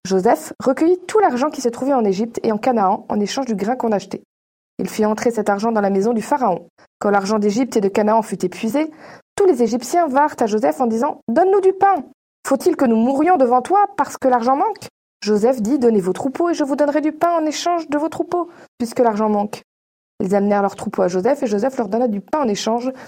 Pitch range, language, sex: 215-275 Hz, French, female